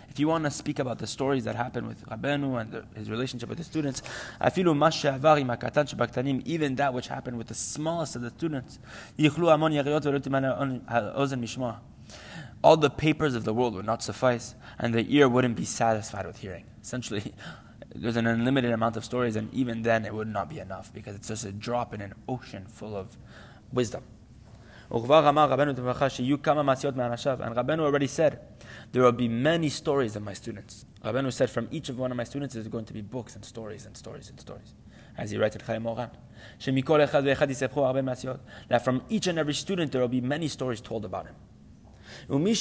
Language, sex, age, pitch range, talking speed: English, male, 20-39, 115-145 Hz, 170 wpm